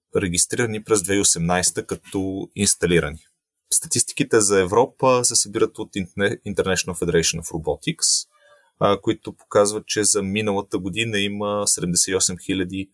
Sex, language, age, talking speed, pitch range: male, Bulgarian, 30-49, 105 wpm, 90-115 Hz